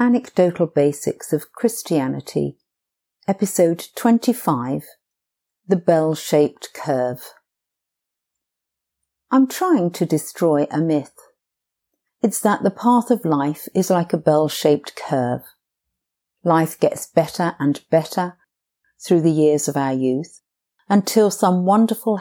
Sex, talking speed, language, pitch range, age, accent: female, 115 wpm, English, 140-195 Hz, 50-69, British